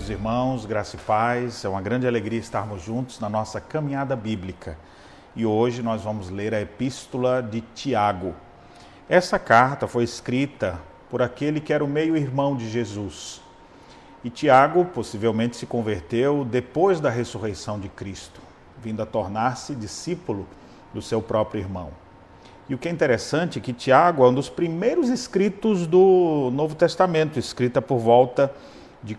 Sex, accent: male, Brazilian